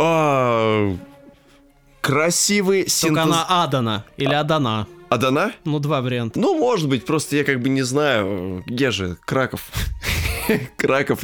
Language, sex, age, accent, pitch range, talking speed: Russian, male, 20-39, native, 110-155 Hz, 115 wpm